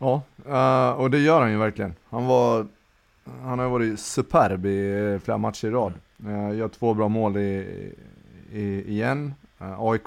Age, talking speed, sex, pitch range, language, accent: 20-39, 160 wpm, male, 95-115 Hz, Swedish, native